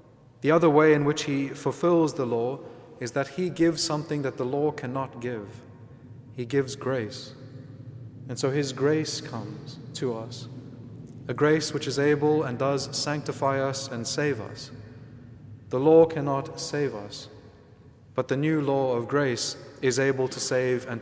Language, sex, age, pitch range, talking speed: English, male, 30-49, 125-150 Hz, 165 wpm